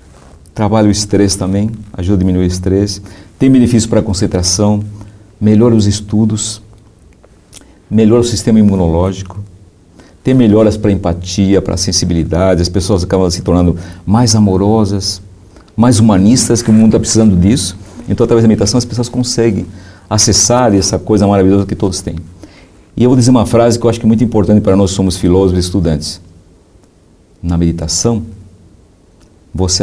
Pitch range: 85-105 Hz